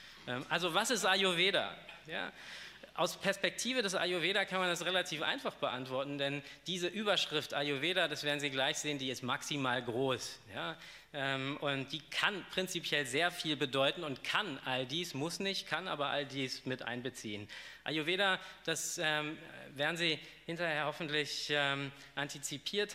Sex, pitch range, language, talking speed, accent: male, 135-165 Hz, German, 145 wpm, German